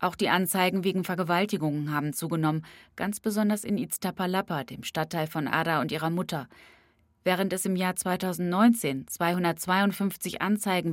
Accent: German